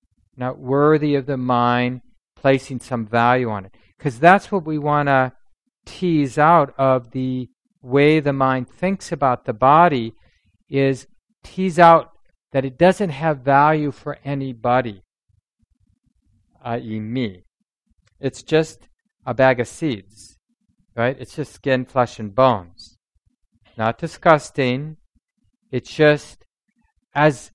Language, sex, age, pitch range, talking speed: English, male, 50-69, 115-150 Hz, 125 wpm